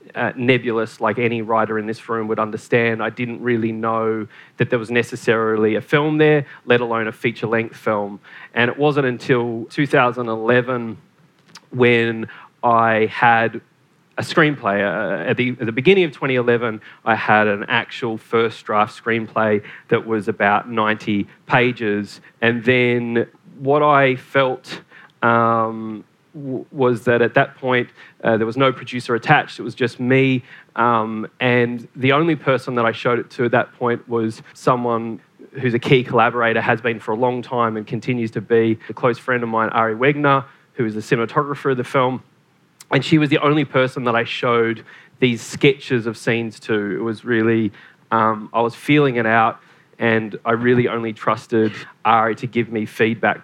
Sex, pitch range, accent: male, 110-130 Hz, Australian